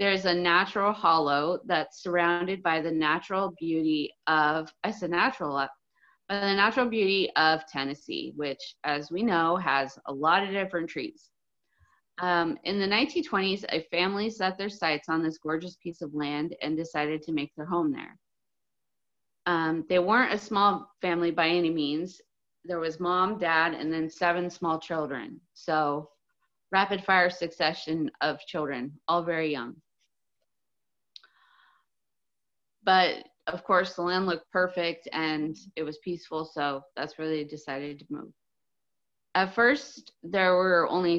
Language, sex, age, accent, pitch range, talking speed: English, female, 30-49, American, 155-185 Hz, 150 wpm